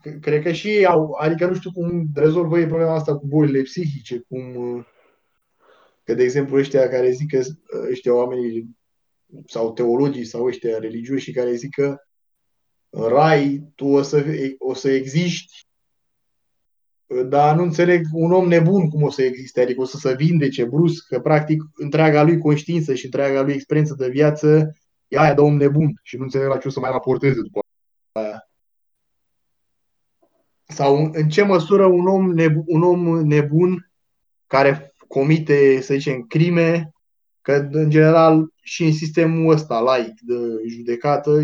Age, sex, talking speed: 20-39, male, 155 wpm